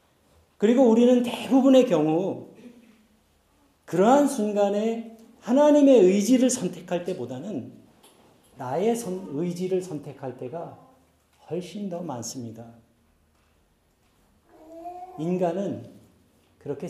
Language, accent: Korean, native